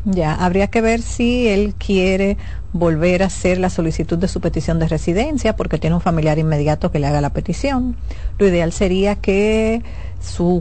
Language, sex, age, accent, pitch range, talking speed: Spanish, female, 50-69, American, 165-210 Hz, 180 wpm